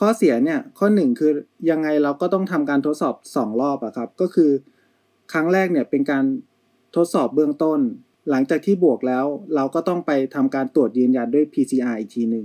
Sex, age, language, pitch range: male, 20-39, Thai, 140-195 Hz